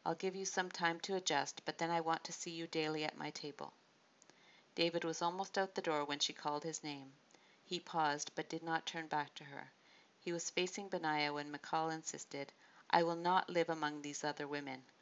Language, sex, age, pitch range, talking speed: English, female, 50-69, 150-175 Hz, 210 wpm